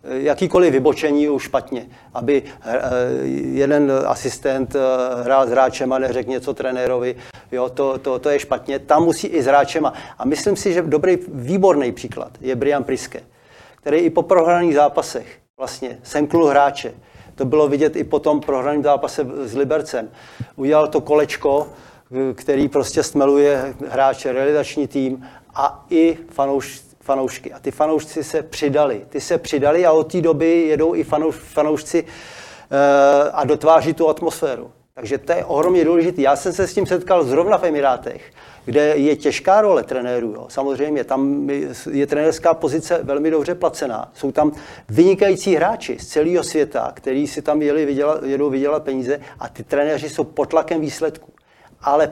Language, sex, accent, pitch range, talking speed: Czech, male, native, 135-160 Hz, 160 wpm